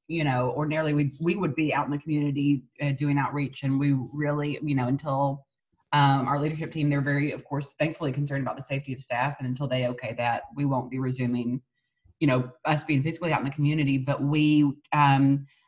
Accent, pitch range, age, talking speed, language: American, 140-155 Hz, 30-49, 205 wpm, English